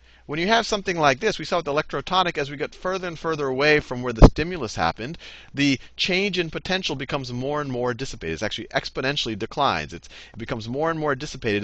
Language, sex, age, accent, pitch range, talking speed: English, male, 40-59, American, 100-150 Hz, 215 wpm